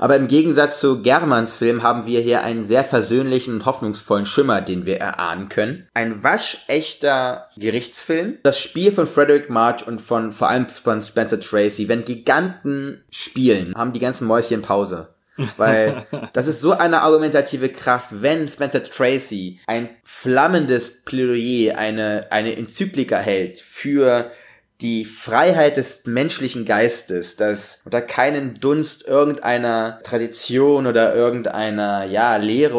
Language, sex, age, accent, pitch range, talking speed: German, male, 20-39, German, 110-140 Hz, 135 wpm